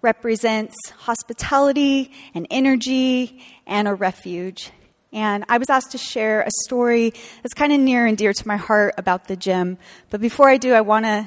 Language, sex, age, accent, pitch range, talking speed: English, female, 30-49, American, 200-255 Hz, 180 wpm